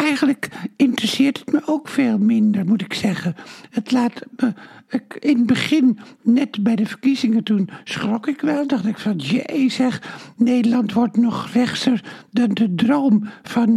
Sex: male